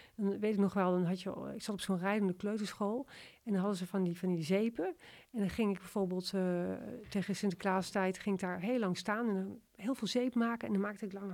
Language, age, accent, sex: Dutch, 40-59, Dutch, female